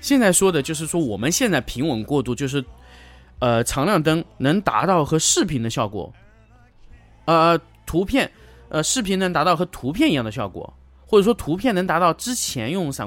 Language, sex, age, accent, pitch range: Chinese, male, 20-39, native, 105-160 Hz